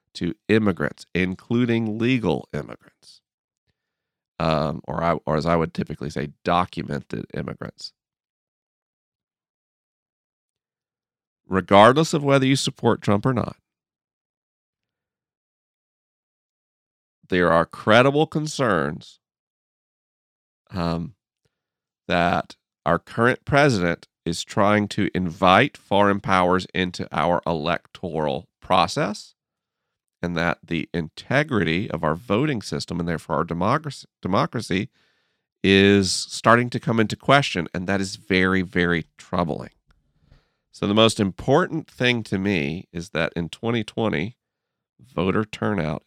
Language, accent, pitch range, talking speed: English, American, 85-110 Hz, 105 wpm